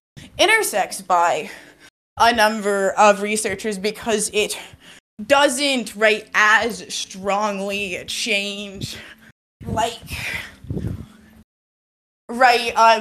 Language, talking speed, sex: English, 75 wpm, female